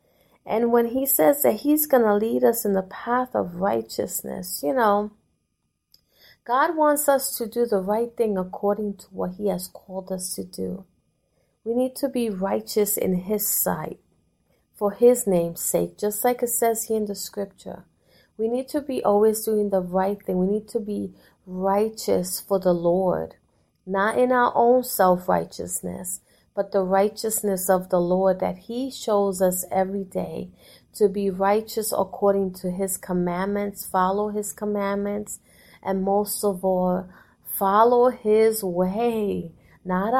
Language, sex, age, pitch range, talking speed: English, female, 30-49, 190-225 Hz, 160 wpm